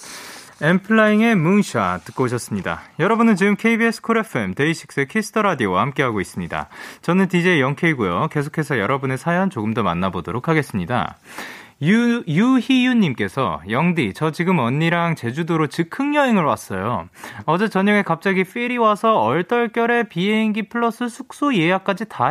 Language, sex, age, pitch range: Korean, male, 30-49, 130-200 Hz